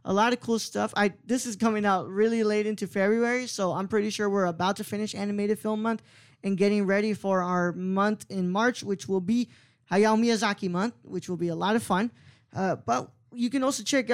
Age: 10-29